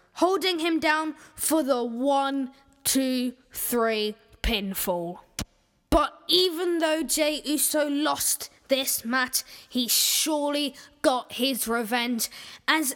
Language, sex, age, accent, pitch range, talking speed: English, female, 10-29, British, 255-320 Hz, 105 wpm